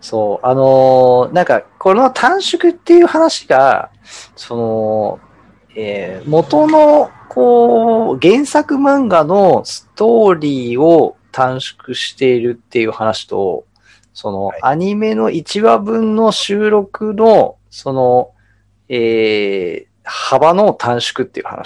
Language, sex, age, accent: Japanese, male, 40-59, native